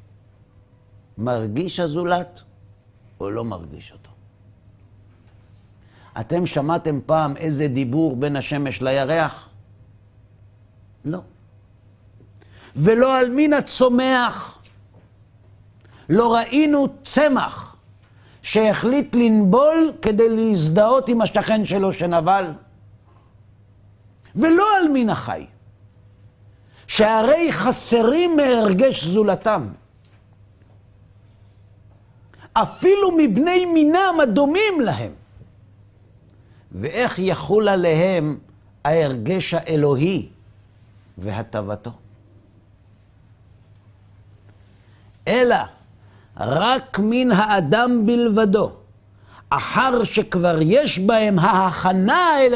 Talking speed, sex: 70 wpm, male